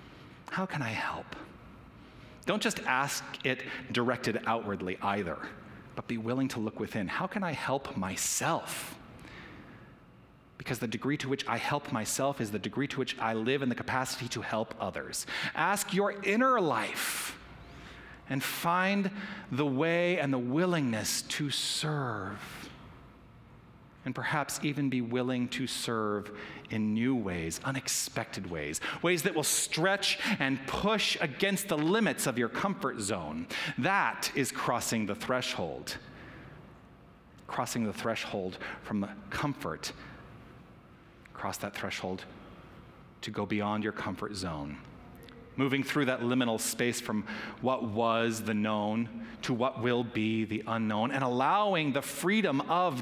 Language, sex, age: English, male, 40-59